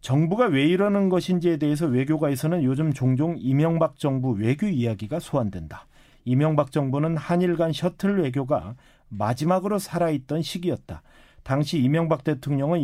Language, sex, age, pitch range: Korean, male, 40-59, 130-175 Hz